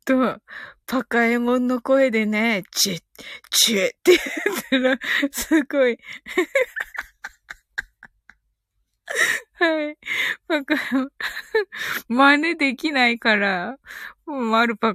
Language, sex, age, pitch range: Japanese, female, 20-39, 220-300 Hz